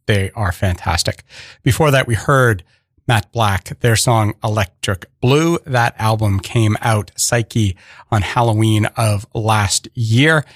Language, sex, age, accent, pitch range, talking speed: English, male, 40-59, American, 105-125 Hz, 130 wpm